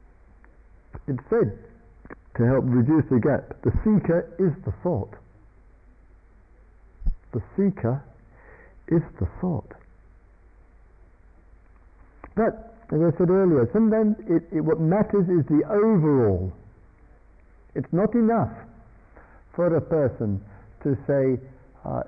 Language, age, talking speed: English, 60-79, 105 wpm